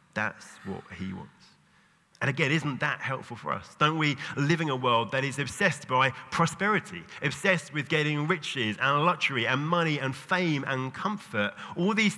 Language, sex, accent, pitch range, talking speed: English, male, British, 100-145 Hz, 175 wpm